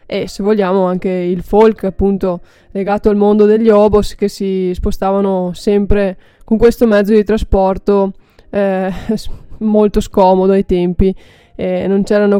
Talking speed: 140 wpm